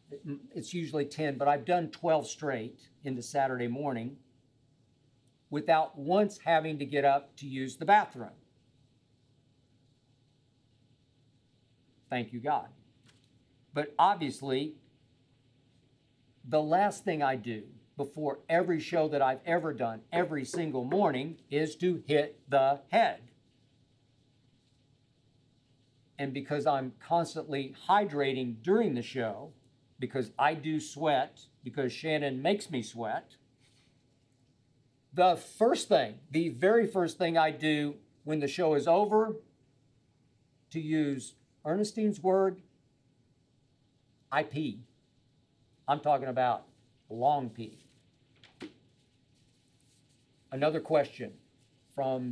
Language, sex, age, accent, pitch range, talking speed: English, male, 50-69, American, 130-150 Hz, 105 wpm